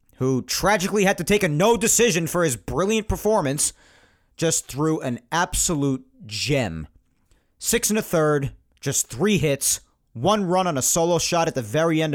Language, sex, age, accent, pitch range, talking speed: English, male, 40-59, American, 110-185 Hz, 170 wpm